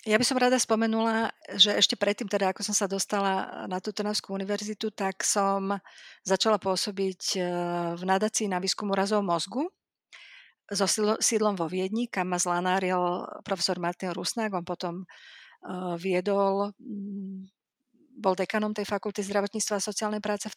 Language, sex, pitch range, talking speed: Slovak, female, 185-220 Hz, 145 wpm